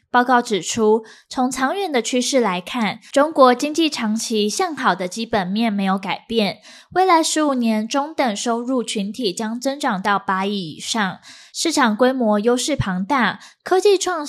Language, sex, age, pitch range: Chinese, female, 10-29, 210-280 Hz